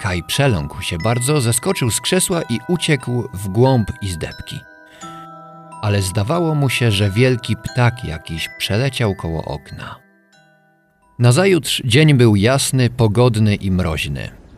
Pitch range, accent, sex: 100-140 Hz, native, male